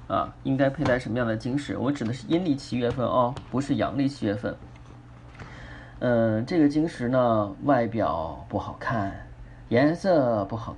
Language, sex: Chinese, male